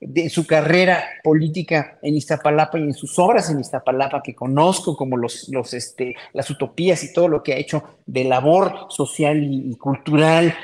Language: Spanish